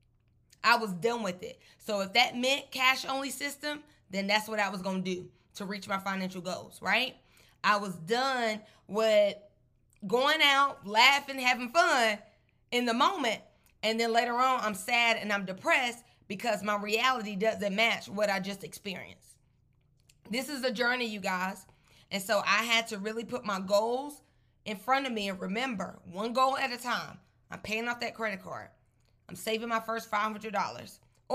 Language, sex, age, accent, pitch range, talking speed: English, female, 20-39, American, 195-250 Hz, 175 wpm